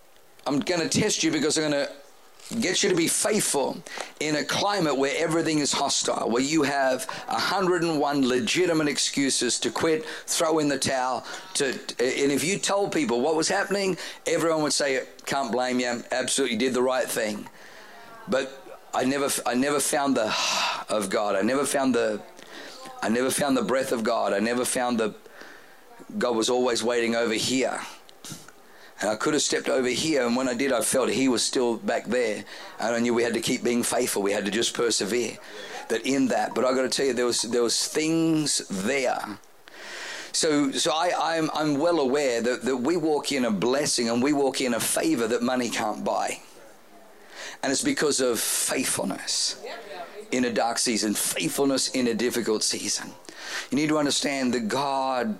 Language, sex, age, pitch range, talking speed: English, male, 50-69, 120-155 Hz, 190 wpm